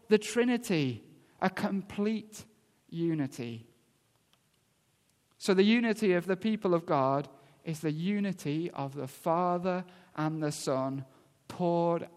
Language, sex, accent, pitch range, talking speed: English, male, British, 155-195 Hz, 115 wpm